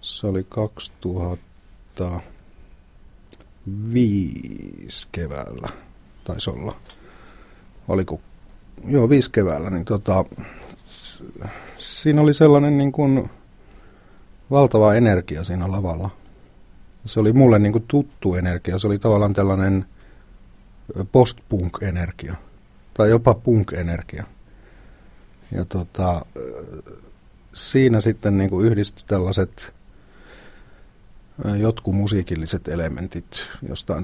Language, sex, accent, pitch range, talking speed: Finnish, male, native, 90-110 Hz, 85 wpm